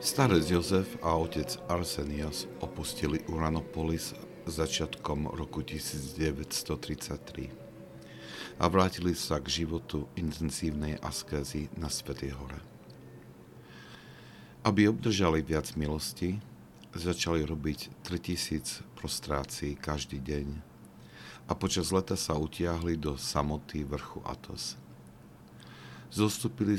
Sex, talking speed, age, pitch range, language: male, 90 wpm, 50-69, 70-85 Hz, Slovak